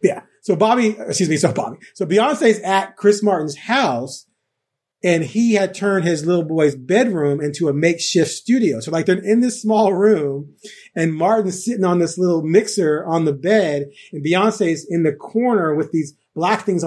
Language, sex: English, male